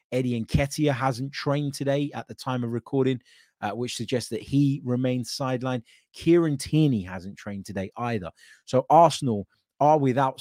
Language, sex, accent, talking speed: English, male, British, 155 wpm